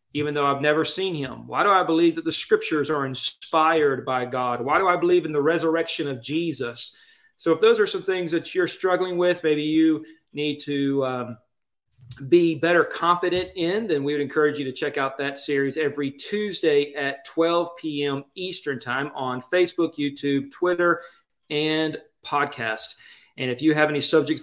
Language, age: English, 30-49